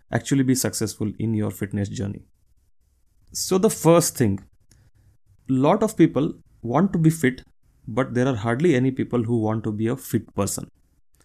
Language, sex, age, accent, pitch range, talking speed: Kannada, male, 30-49, native, 105-140 Hz, 165 wpm